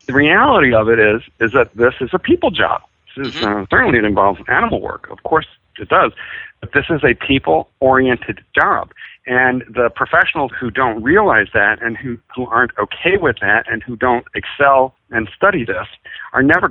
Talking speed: 190 wpm